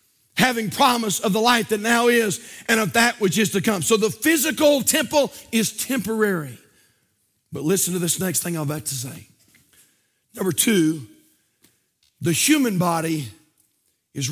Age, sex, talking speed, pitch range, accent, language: 50-69, male, 155 wpm, 135-210 Hz, American, English